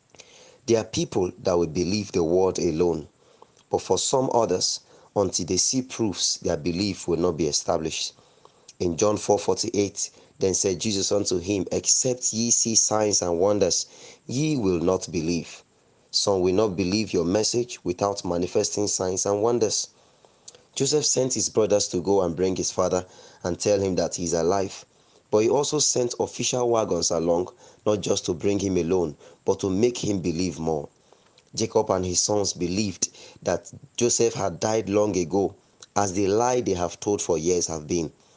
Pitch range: 90-115 Hz